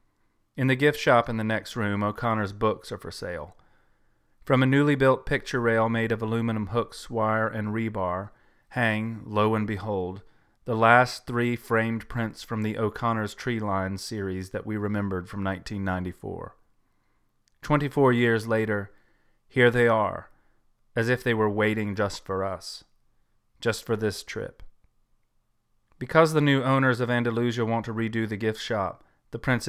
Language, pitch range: English, 100-120 Hz